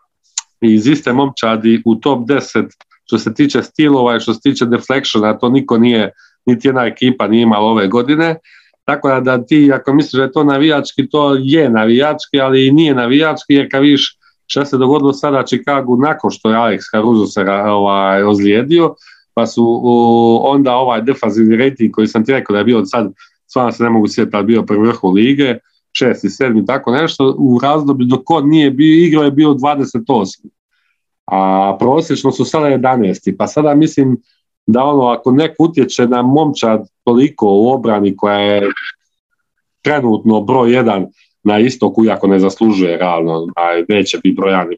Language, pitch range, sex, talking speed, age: Croatian, 110-140 Hz, male, 170 wpm, 40-59